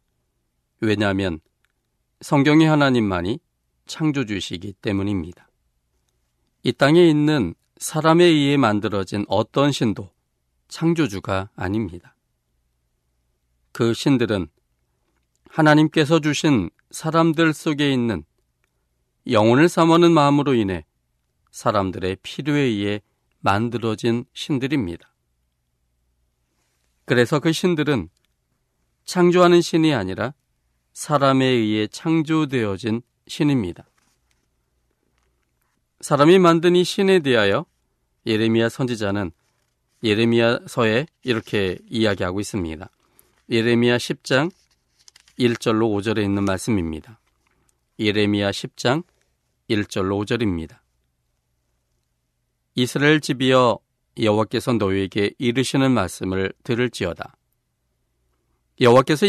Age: 40-59